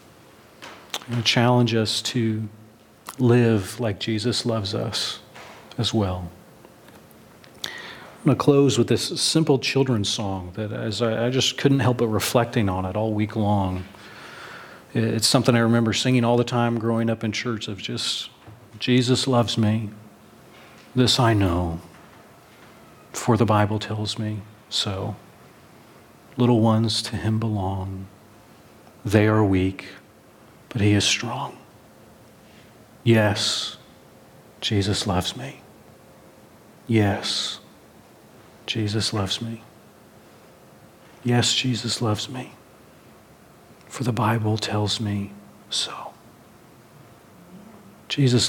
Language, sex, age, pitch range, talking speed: English, male, 40-59, 105-120 Hz, 115 wpm